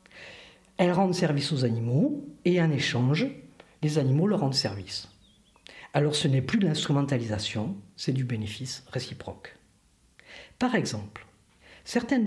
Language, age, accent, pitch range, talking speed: French, 50-69, French, 125-175 Hz, 125 wpm